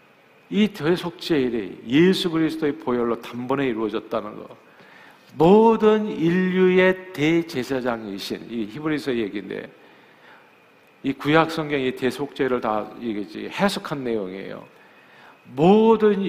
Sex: male